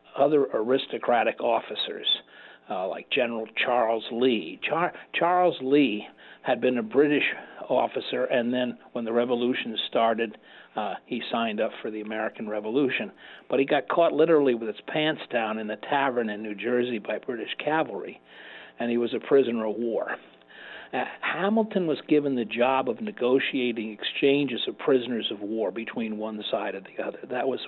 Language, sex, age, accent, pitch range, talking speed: English, male, 50-69, American, 115-150 Hz, 165 wpm